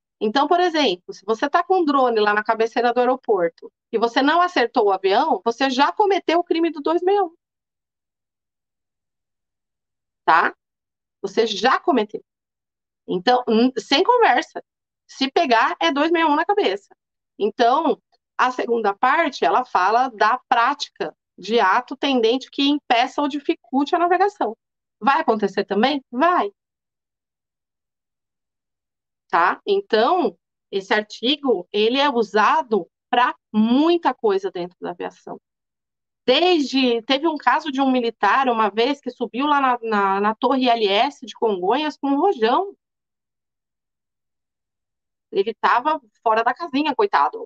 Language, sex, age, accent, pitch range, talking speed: Portuguese, female, 30-49, Brazilian, 230-350 Hz, 130 wpm